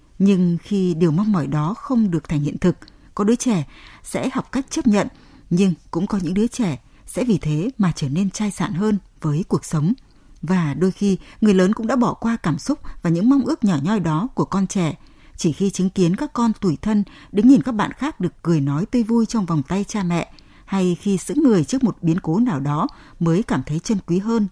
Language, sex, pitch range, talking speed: Vietnamese, female, 170-225 Hz, 235 wpm